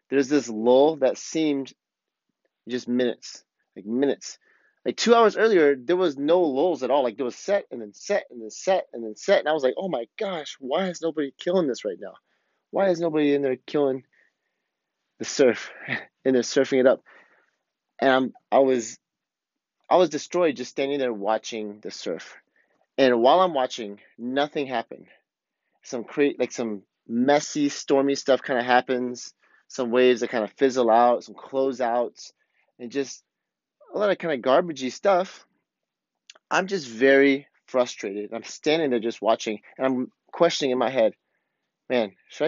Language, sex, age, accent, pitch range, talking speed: English, male, 30-49, American, 120-150 Hz, 175 wpm